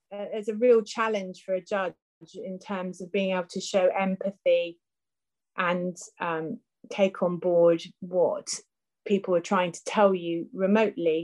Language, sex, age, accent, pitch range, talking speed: English, female, 30-49, British, 175-200 Hz, 150 wpm